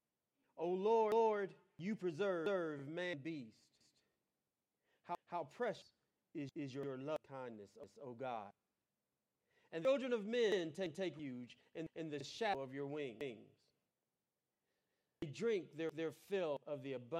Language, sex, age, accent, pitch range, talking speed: English, male, 40-59, American, 140-190 Hz, 155 wpm